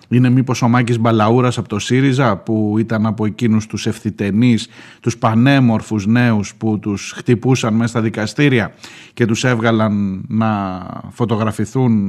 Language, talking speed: Greek, 140 wpm